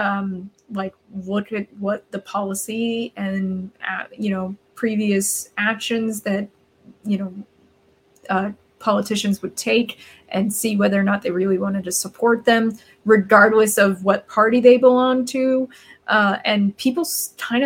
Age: 20-39